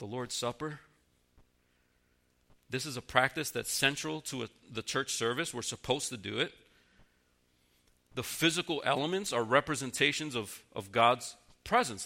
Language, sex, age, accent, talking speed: English, male, 40-59, American, 135 wpm